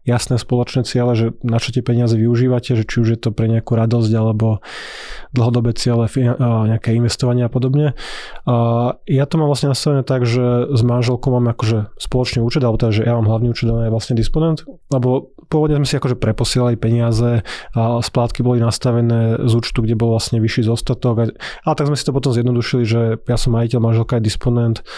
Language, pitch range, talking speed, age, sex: Slovak, 115-125 Hz, 195 wpm, 20-39, male